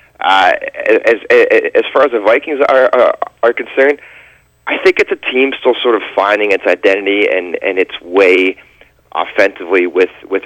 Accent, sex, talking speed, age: American, male, 165 wpm, 30-49